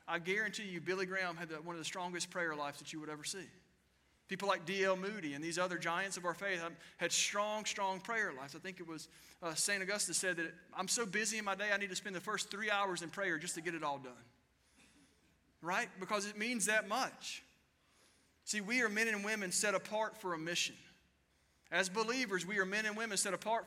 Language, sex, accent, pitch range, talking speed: English, male, American, 165-210 Hz, 235 wpm